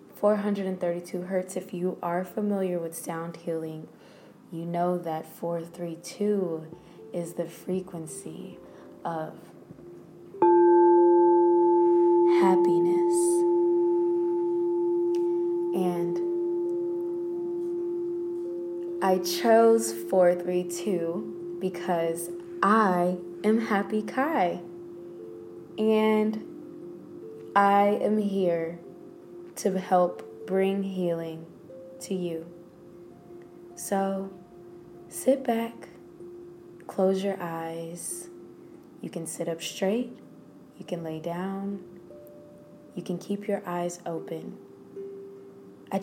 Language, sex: English, female